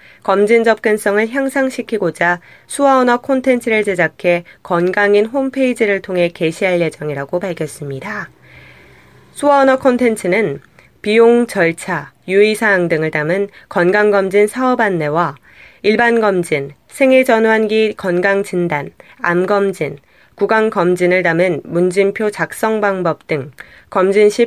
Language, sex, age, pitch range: Korean, female, 20-39, 175-225 Hz